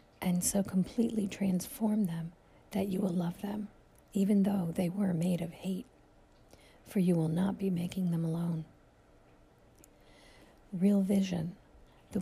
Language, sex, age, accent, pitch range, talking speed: English, female, 50-69, American, 180-210 Hz, 140 wpm